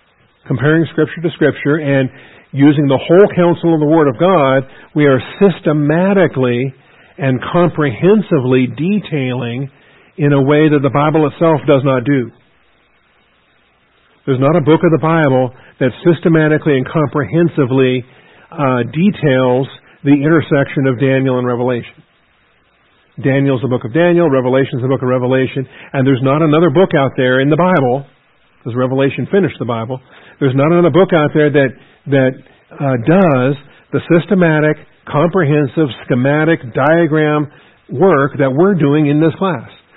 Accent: American